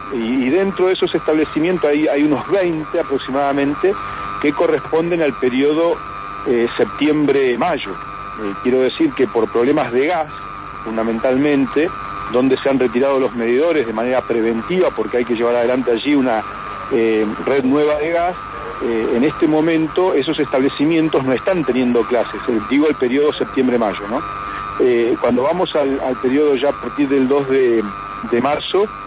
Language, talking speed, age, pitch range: Spanish, 155 wpm, 40-59, 115-150 Hz